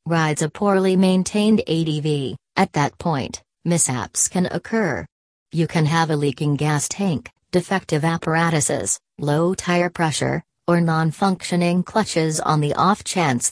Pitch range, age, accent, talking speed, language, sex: 150-180 Hz, 40-59, American, 135 wpm, English, female